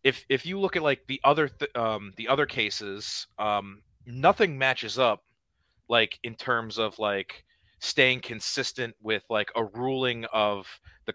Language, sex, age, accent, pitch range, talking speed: English, male, 30-49, American, 110-140 Hz, 160 wpm